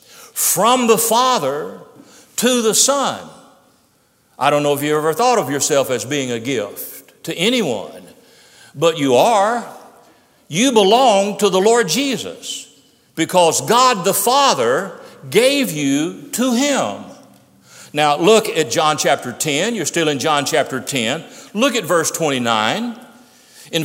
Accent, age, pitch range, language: American, 60-79, 165-250 Hz, English